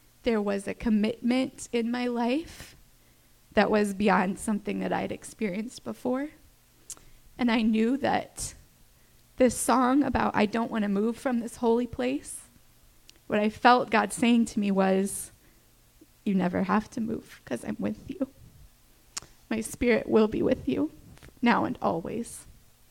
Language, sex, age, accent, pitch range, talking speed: English, female, 20-39, American, 220-265 Hz, 150 wpm